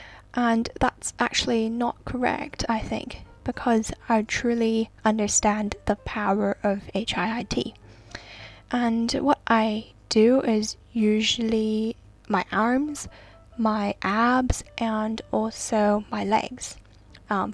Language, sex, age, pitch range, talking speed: English, female, 10-29, 195-230 Hz, 105 wpm